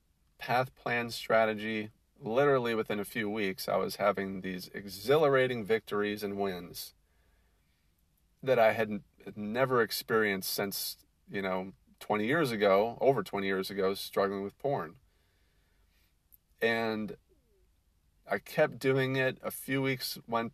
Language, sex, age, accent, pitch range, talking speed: English, male, 40-59, American, 80-115 Hz, 125 wpm